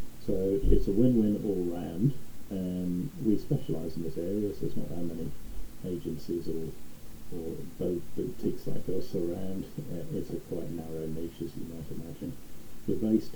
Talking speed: 165 wpm